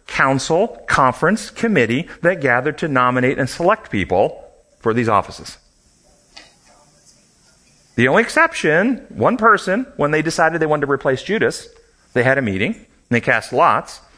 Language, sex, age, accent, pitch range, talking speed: English, male, 40-59, American, 120-185 Hz, 145 wpm